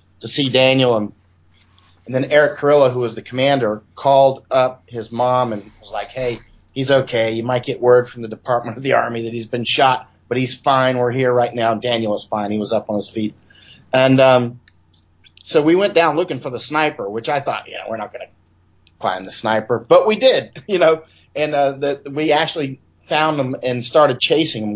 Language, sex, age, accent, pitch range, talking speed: English, male, 30-49, American, 110-140 Hz, 220 wpm